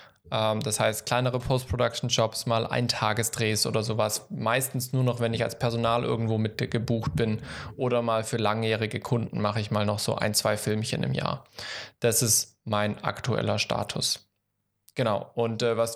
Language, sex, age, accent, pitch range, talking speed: German, male, 20-39, German, 115-140 Hz, 165 wpm